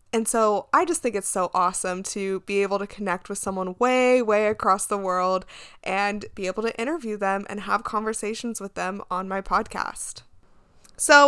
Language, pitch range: English, 190-230 Hz